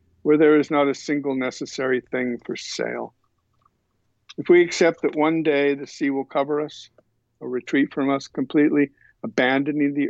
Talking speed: 165 wpm